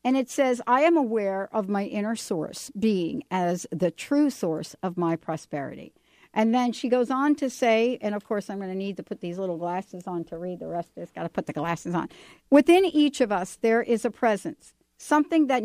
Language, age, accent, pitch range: English, 60-79, American, 185-265 Hz